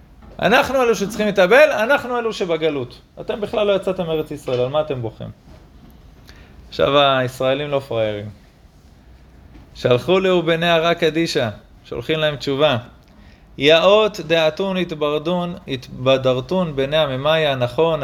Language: Hebrew